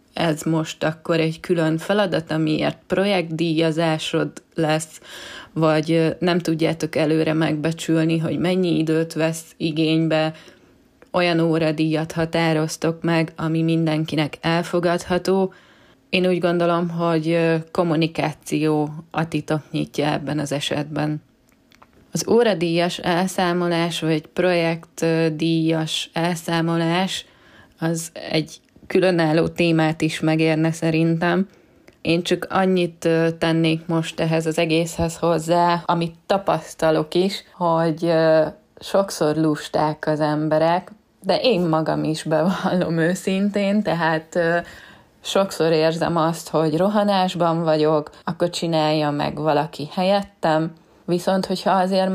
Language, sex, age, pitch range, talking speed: Hungarian, female, 20-39, 160-175 Hz, 100 wpm